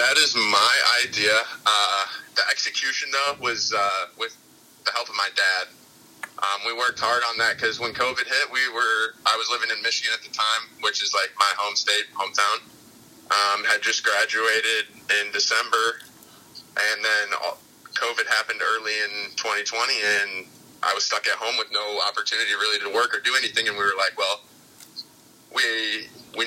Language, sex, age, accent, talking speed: English, male, 20-39, American, 180 wpm